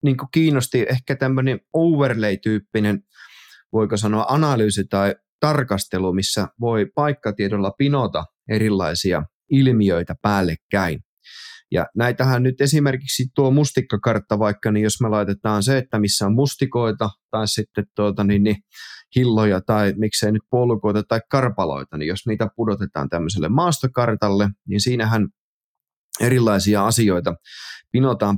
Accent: native